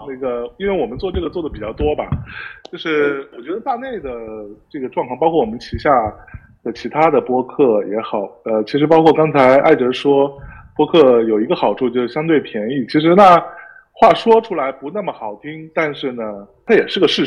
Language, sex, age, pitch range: Chinese, male, 20-39, 115-190 Hz